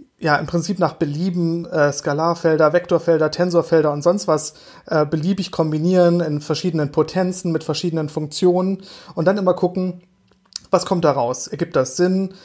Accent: German